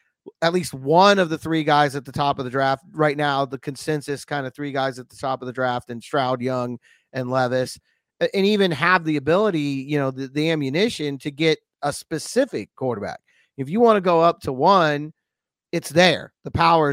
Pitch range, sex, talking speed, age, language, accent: 140-165 Hz, male, 210 wpm, 40-59, English, American